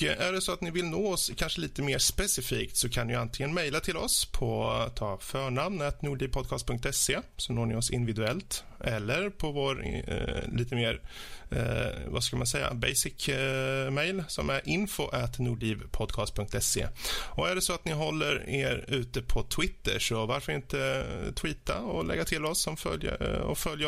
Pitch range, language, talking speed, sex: 115-170 Hz, Swedish, 175 wpm, male